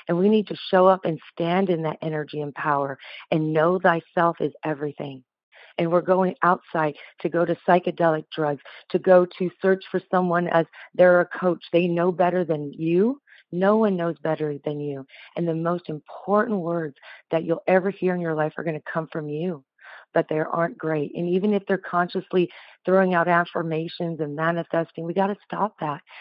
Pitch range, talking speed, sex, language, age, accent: 155-185 Hz, 195 wpm, female, English, 40-59, American